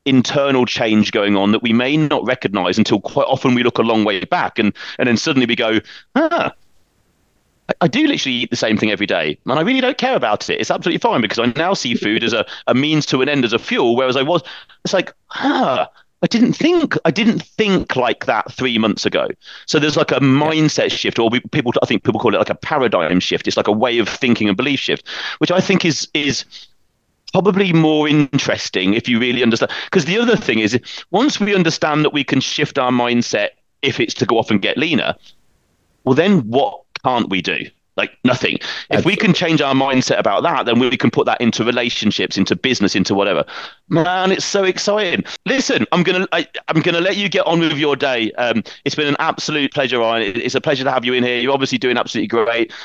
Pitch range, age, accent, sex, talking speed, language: 120-175 Hz, 30-49, British, male, 225 wpm, English